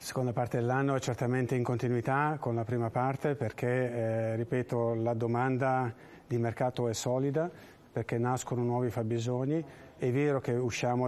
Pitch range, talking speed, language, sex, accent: 115-130 Hz, 150 wpm, Italian, male, native